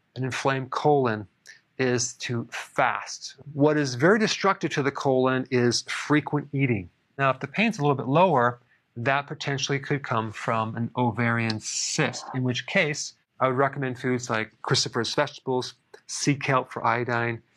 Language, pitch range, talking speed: English, 120-140 Hz, 155 wpm